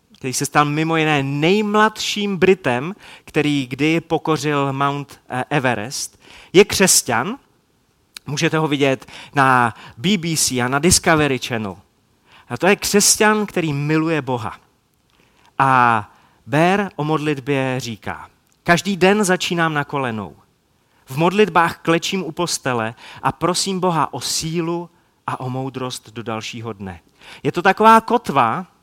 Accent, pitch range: native, 125-170 Hz